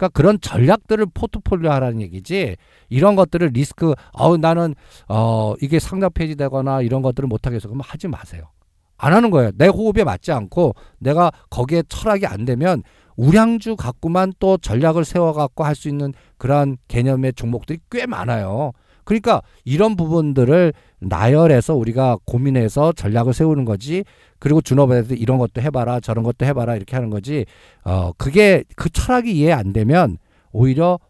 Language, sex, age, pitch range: Korean, male, 50-69, 115-165 Hz